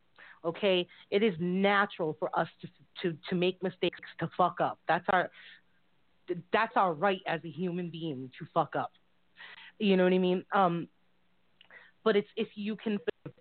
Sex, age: female, 30-49